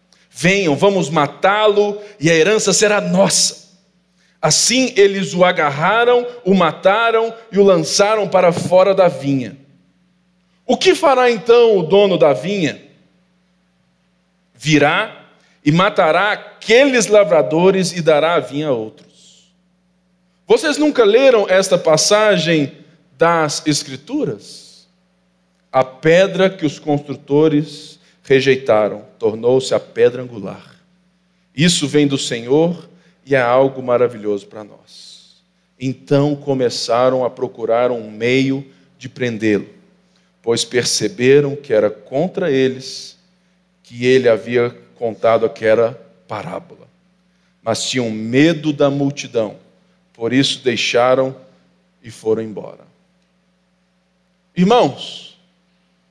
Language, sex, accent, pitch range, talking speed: Portuguese, male, Brazilian, 135-190 Hz, 105 wpm